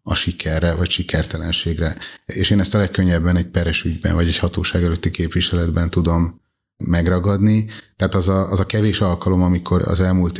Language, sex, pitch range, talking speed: Hungarian, male, 85-95 Hz, 160 wpm